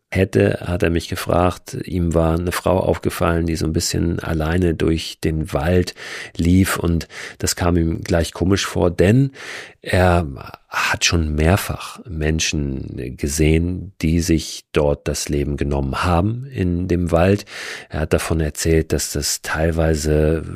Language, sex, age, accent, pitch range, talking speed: German, male, 40-59, German, 80-95 Hz, 145 wpm